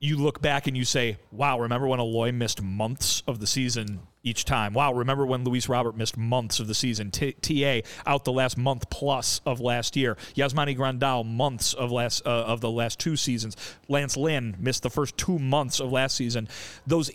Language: English